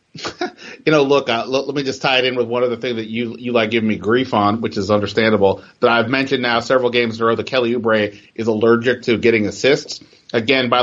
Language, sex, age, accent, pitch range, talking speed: English, male, 30-49, American, 115-135 Hz, 250 wpm